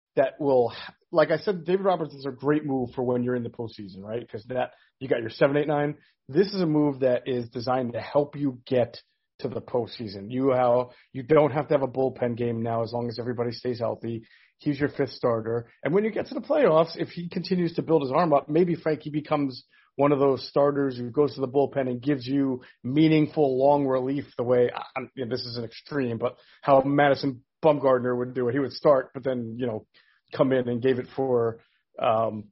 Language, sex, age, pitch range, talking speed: English, male, 40-59, 120-145 Hz, 220 wpm